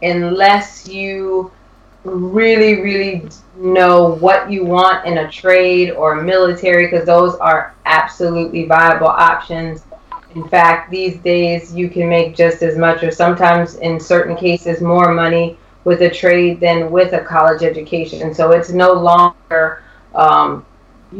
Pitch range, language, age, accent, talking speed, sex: 160-185 Hz, English, 20-39, American, 140 wpm, female